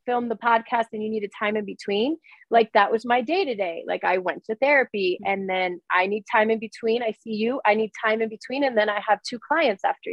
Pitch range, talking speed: 210-255 Hz, 260 wpm